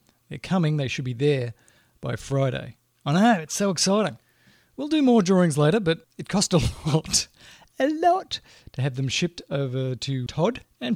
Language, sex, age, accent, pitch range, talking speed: English, male, 40-59, Australian, 140-180 Hz, 180 wpm